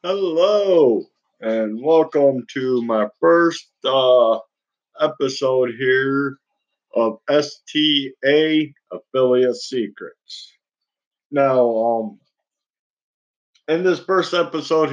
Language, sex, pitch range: English, male, 130-160 Hz